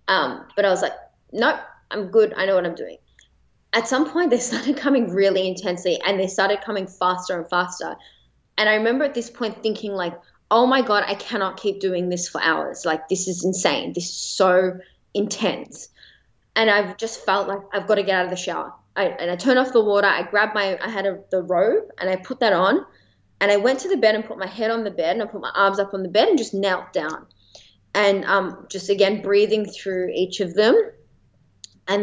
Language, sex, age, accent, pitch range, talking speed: English, female, 20-39, Australian, 185-215 Hz, 225 wpm